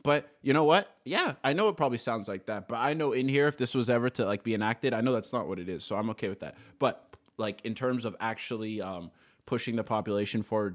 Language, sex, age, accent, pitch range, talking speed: English, male, 20-39, American, 100-120 Hz, 270 wpm